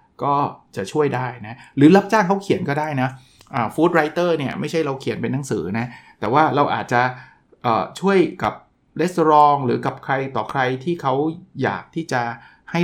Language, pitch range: Thai, 120-155 Hz